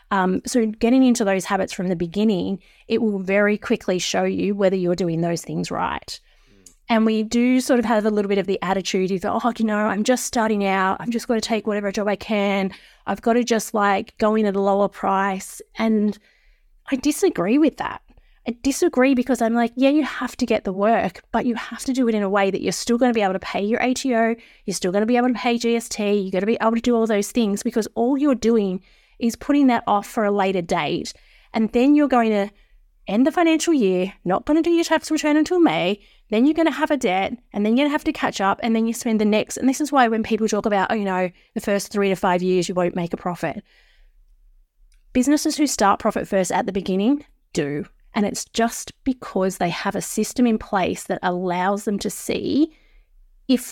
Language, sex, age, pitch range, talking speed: English, female, 20-39, 195-245 Hz, 240 wpm